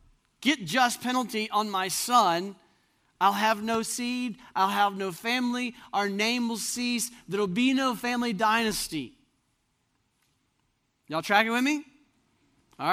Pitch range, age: 180-245 Hz, 40-59